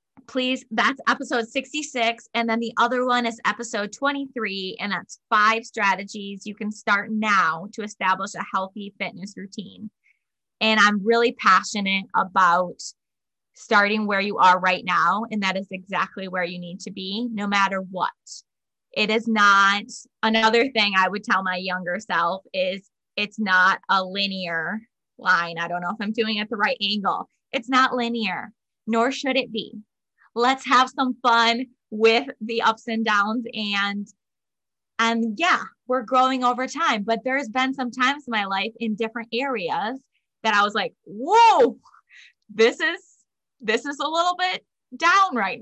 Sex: female